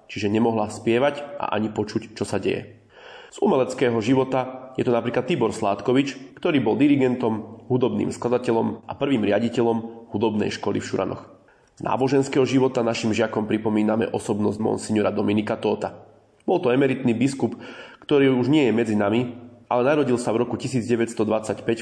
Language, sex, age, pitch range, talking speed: Slovak, male, 30-49, 110-125 Hz, 150 wpm